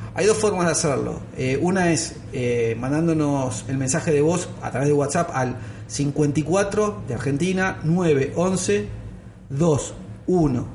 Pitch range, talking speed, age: 125-160 Hz, 145 wpm, 40-59